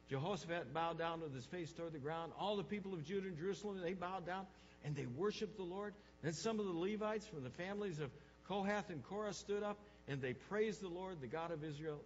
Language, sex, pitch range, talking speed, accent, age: English, male, 120-180 Hz, 235 wpm, American, 60-79